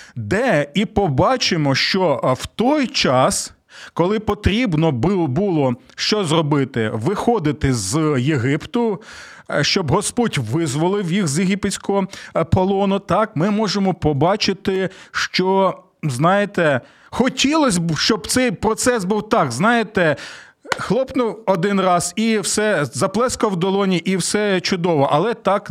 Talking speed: 115 wpm